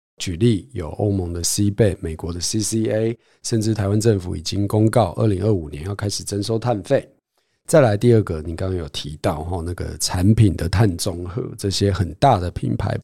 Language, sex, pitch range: Chinese, male, 95-115 Hz